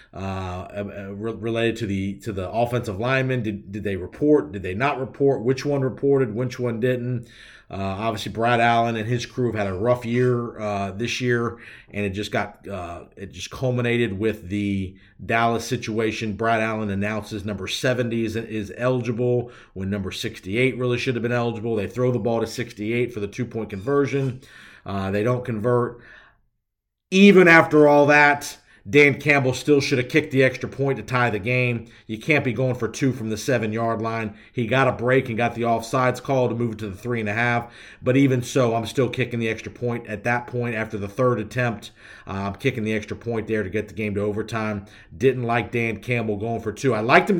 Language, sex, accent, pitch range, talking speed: English, male, American, 110-130 Hz, 205 wpm